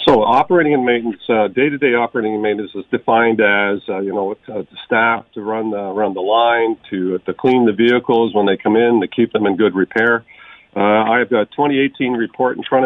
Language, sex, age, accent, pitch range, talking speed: English, male, 50-69, American, 110-130 Hz, 215 wpm